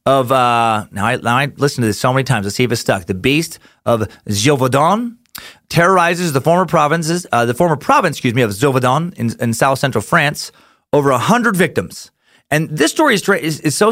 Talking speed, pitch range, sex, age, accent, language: 215 wpm, 120-170 Hz, male, 30-49, American, English